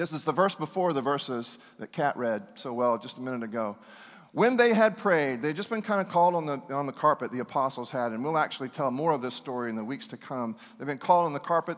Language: English